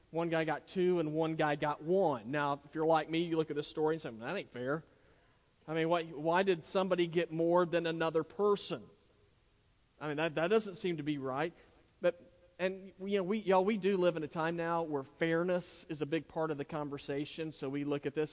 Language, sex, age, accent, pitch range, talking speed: English, male, 40-59, American, 145-180 Hz, 235 wpm